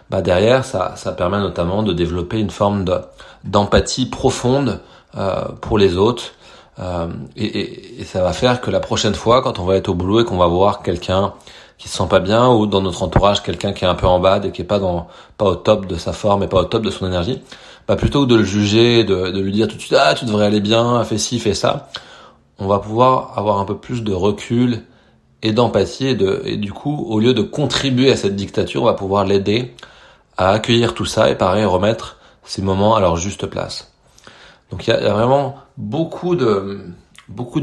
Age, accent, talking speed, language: 30-49, French, 235 wpm, French